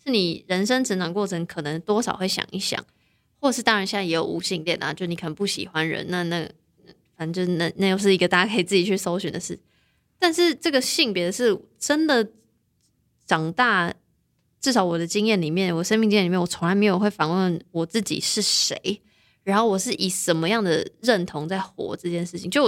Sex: female